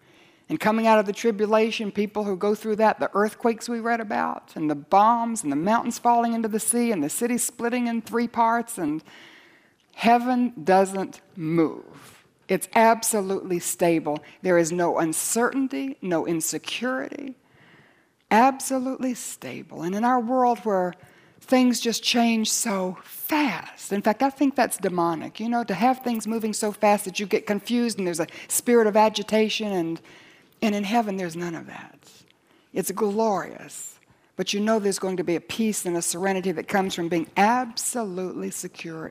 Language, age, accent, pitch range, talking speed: English, 60-79, American, 185-240 Hz, 170 wpm